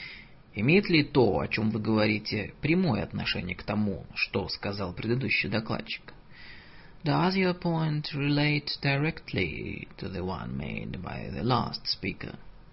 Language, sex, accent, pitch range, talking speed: Russian, male, native, 105-155 Hz, 95 wpm